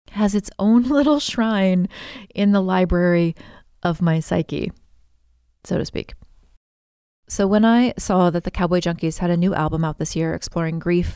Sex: female